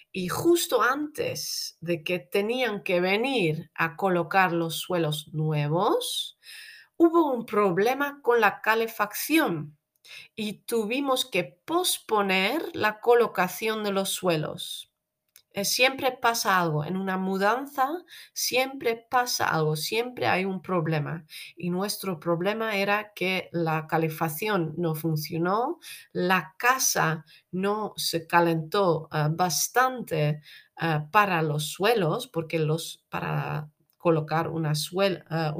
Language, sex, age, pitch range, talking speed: Dutch, female, 40-59, 160-210 Hz, 115 wpm